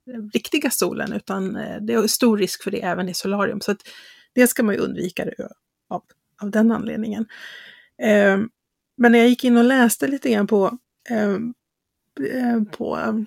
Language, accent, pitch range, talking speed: English, Swedish, 200-245 Hz, 165 wpm